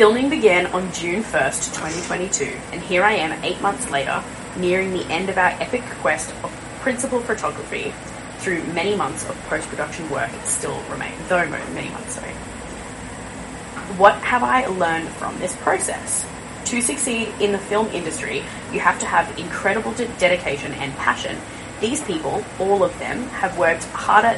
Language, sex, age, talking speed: English, female, 20-39, 160 wpm